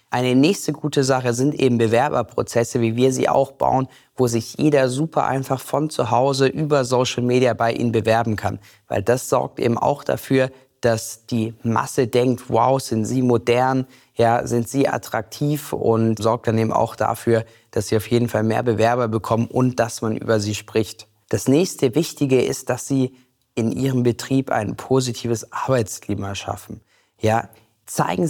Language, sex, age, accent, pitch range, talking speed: German, male, 20-39, German, 115-135 Hz, 170 wpm